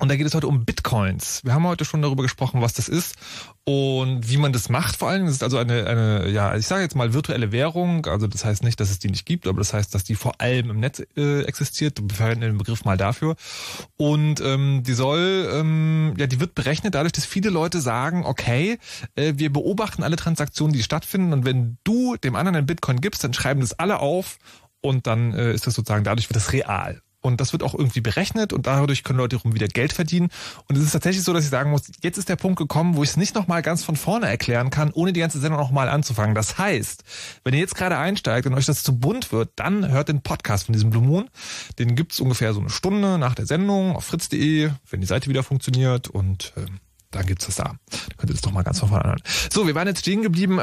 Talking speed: 250 wpm